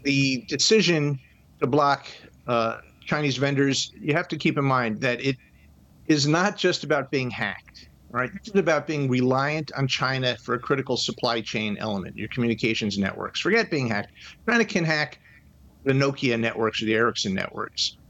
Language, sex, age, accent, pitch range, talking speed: English, male, 50-69, American, 115-145 Hz, 165 wpm